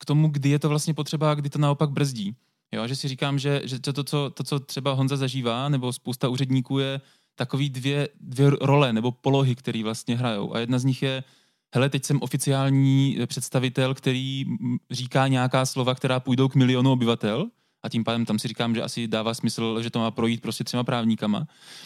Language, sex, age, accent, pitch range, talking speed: Czech, male, 20-39, native, 120-140 Hz, 205 wpm